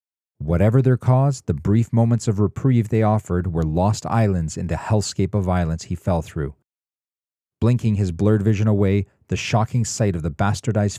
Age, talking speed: 40-59, 175 wpm